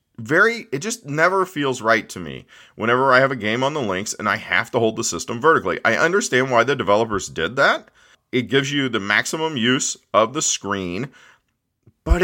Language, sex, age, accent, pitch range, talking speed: English, male, 40-59, American, 105-145 Hz, 200 wpm